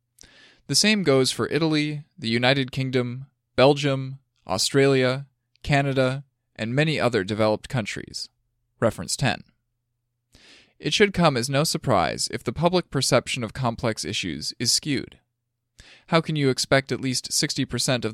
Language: English